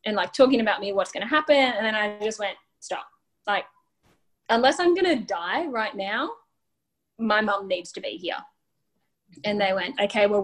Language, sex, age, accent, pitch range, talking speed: English, female, 10-29, Australian, 195-225 Hz, 195 wpm